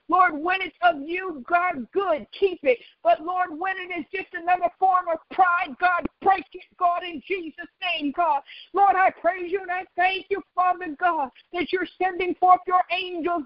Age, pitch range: 50-69, 345-370 Hz